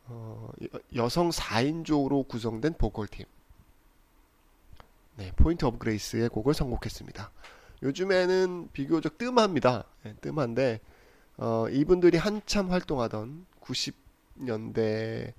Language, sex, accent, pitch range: Korean, male, native, 115-155 Hz